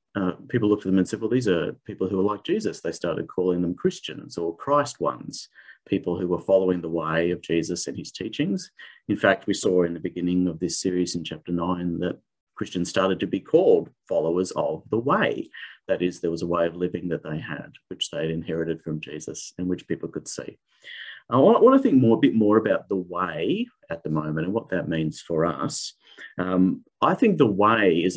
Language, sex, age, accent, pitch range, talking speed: English, male, 30-49, Australian, 85-100 Hz, 220 wpm